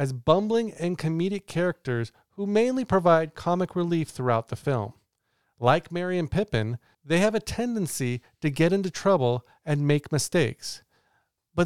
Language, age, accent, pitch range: English, 40-59, American, 125-185 Hz